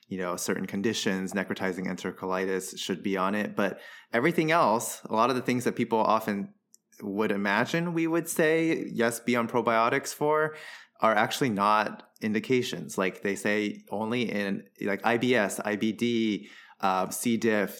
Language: English